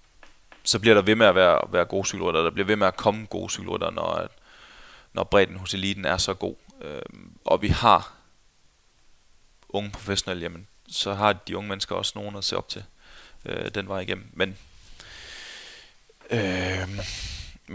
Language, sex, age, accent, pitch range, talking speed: Danish, male, 20-39, native, 95-105 Hz, 160 wpm